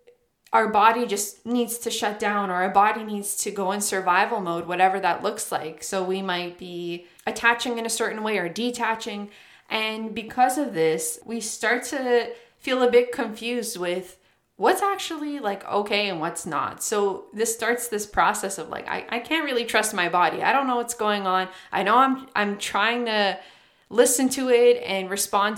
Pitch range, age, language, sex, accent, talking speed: 185-235 Hz, 20-39, English, female, American, 190 wpm